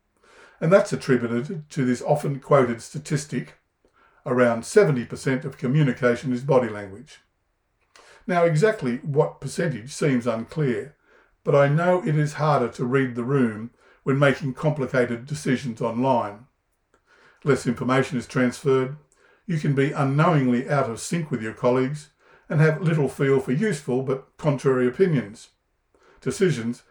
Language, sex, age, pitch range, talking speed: English, male, 50-69, 125-150 Hz, 135 wpm